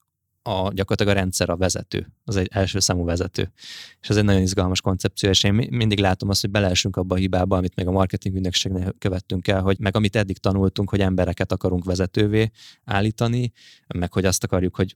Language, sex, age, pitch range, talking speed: Hungarian, male, 20-39, 90-105 Hz, 195 wpm